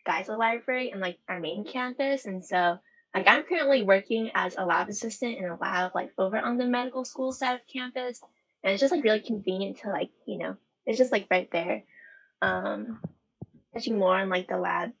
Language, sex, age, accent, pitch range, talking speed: English, female, 10-29, American, 195-250 Hz, 205 wpm